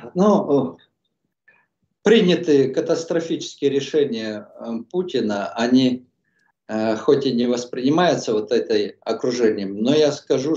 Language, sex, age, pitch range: Russian, male, 50-69, 120-180 Hz